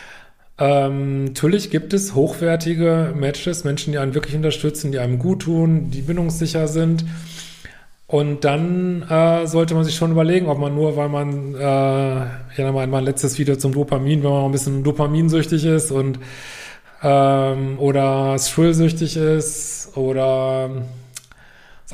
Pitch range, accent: 135-160 Hz, German